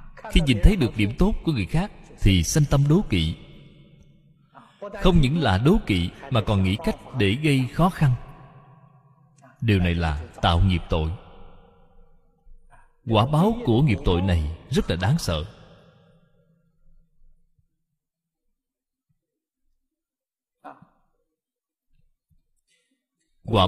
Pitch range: 100-160 Hz